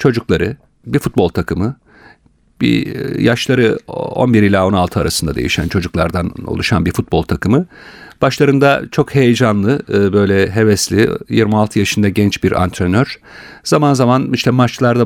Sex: male